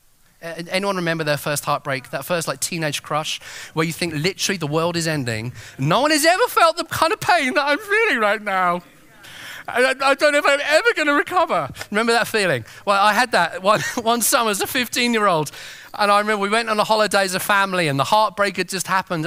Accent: British